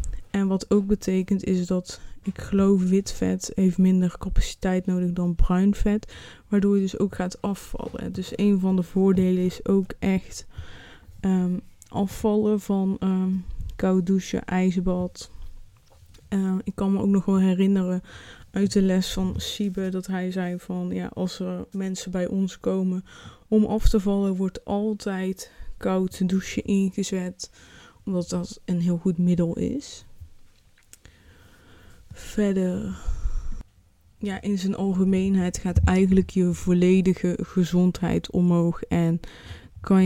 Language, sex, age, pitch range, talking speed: Dutch, female, 20-39, 175-195 Hz, 130 wpm